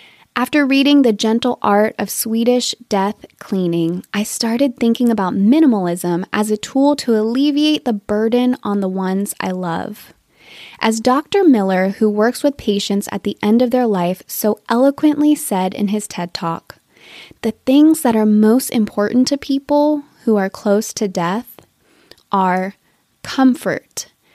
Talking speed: 150 wpm